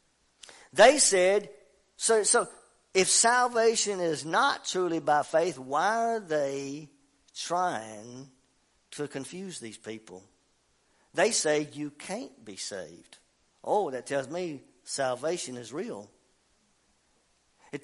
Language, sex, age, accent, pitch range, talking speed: English, male, 50-69, American, 155-235 Hz, 110 wpm